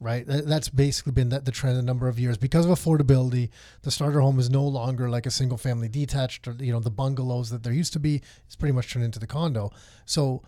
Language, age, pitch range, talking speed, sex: English, 30-49, 120-145 Hz, 240 wpm, male